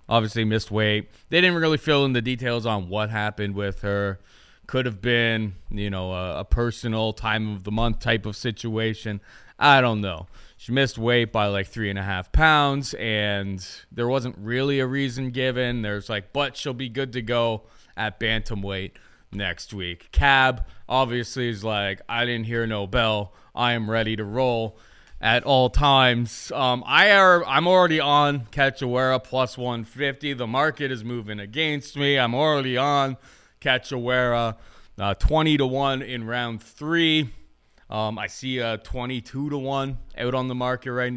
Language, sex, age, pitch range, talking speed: English, male, 20-39, 110-135 Hz, 170 wpm